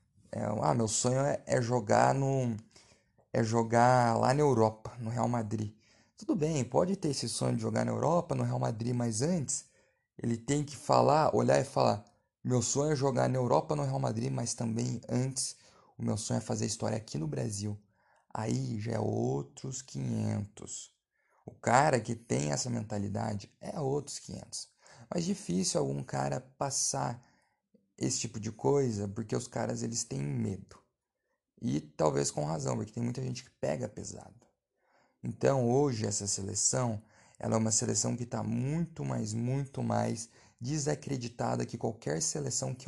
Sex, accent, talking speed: male, Brazilian, 165 wpm